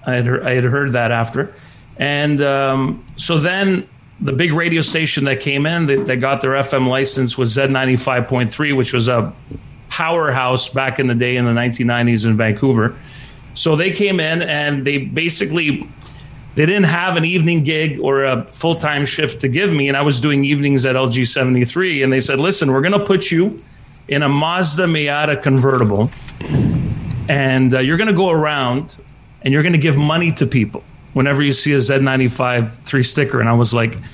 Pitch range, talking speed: 130-160 Hz, 185 wpm